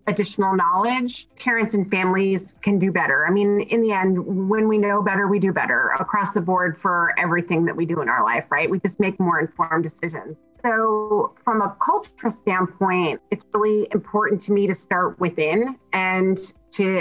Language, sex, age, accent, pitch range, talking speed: English, female, 30-49, American, 175-205 Hz, 185 wpm